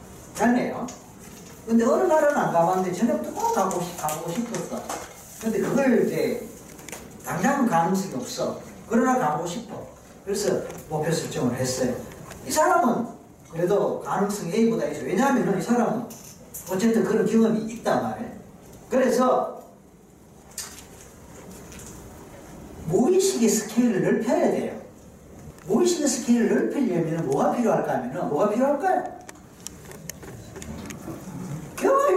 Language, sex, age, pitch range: Korean, male, 40-59, 185-260 Hz